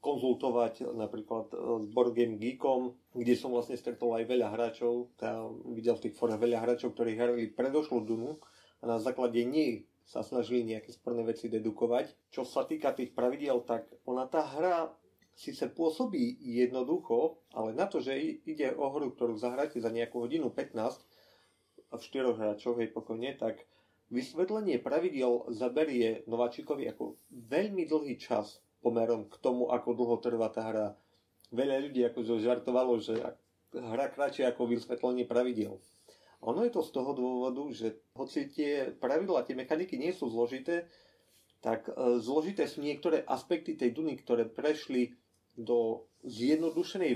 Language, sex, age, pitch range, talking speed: Slovak, male, 30-49, 115-135 Hz, 150 wpm